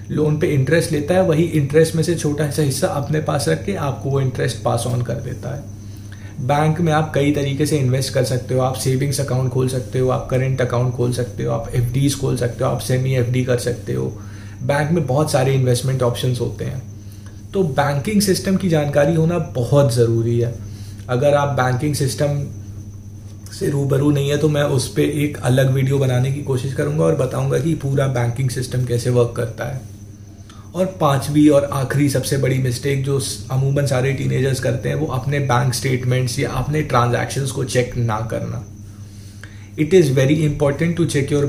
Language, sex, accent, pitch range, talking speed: Hindi, male, native, 120-145 Hz, 195 wpm